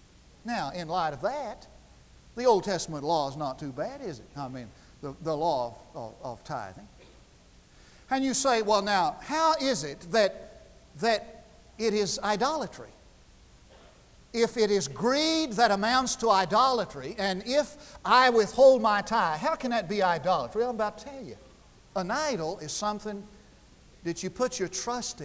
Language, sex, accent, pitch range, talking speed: English, male, American, 155-230 Hz, 170 wpm